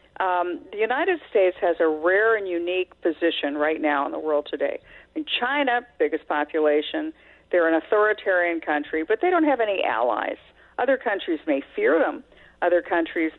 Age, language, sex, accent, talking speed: 50-69, English, female, American, 160 wpm